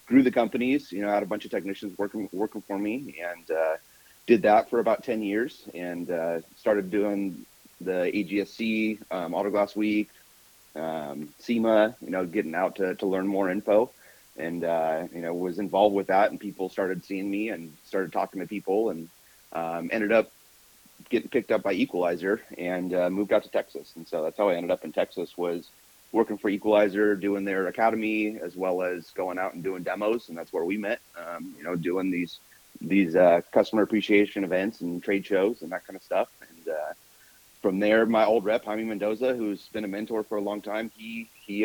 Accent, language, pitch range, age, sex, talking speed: American, English, 90-110 Hz, 30-49, male, 205 wpm